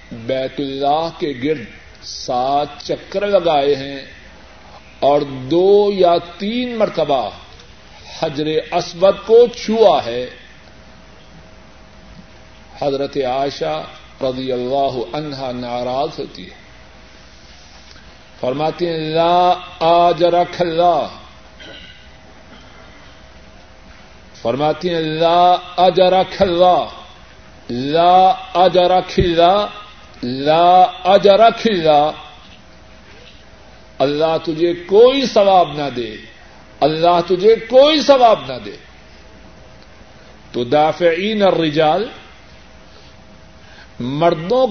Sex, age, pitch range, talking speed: male, 50-69, 140-200 Hz, 75 wpm